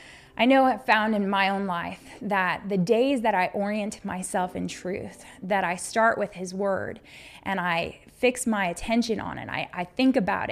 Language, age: English, 20-39